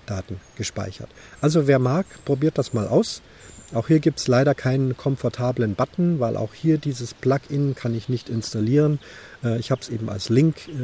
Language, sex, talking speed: German, male, 175 wpm